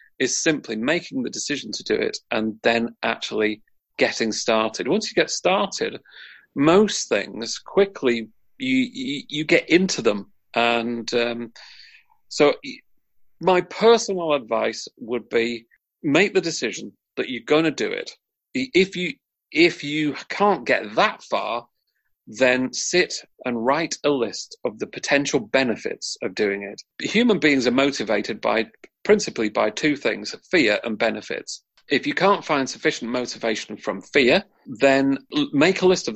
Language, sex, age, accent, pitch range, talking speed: English, male, 40-59, British, 120-190 Hz, 150 wpm